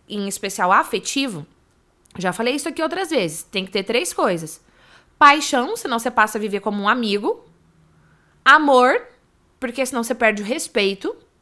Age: 20-39